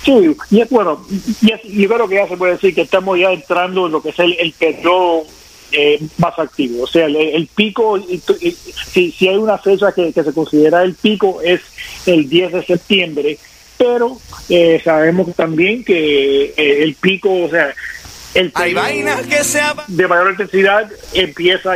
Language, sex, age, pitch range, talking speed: English, male, 50-69, 160-195 Hz, 180 wpm